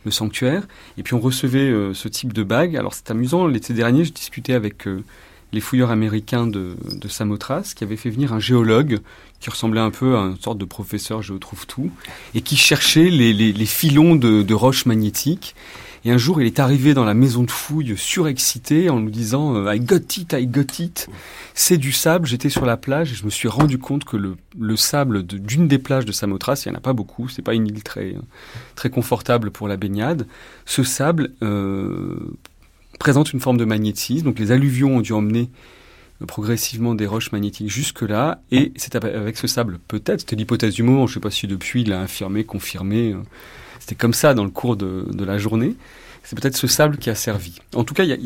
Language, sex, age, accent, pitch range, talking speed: French, male, 30-49, French, 105-140 Hz, 225 wpm